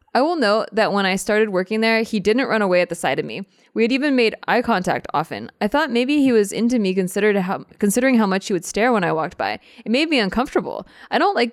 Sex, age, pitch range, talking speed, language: female, 20-39, 175-225 Hz, 265 wpm, English